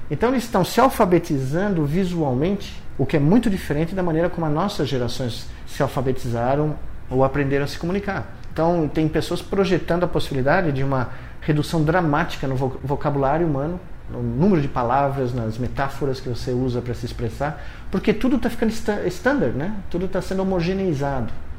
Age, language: 50-69, Portuguese